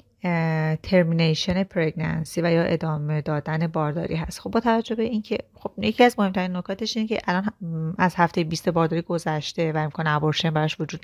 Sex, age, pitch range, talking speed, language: female, 30-49, 160-190 Hz, 175 wpm, Persian